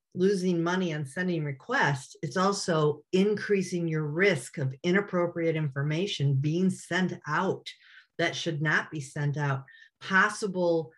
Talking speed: 125 wpm